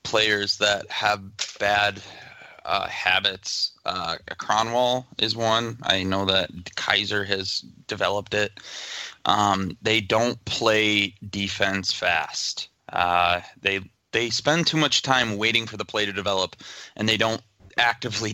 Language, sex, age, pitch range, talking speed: English, male, 20-39, 100-125 Hz, 130 wpm